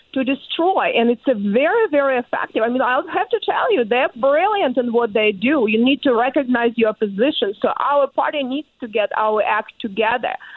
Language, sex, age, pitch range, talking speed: English, female, 40-59, 220-270 Hz, 205 wpm